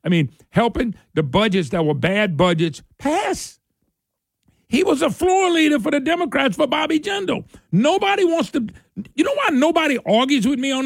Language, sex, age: English, male, 50-69